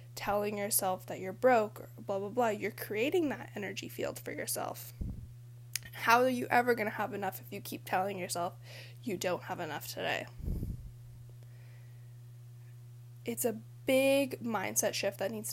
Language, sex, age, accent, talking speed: English, female, 10-29, American, 155 wpm